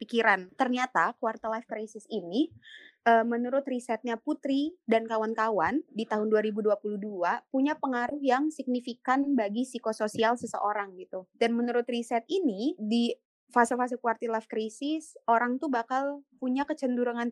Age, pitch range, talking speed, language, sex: 20-39, 215-270 Hz, 130 wpm, Indonesian, female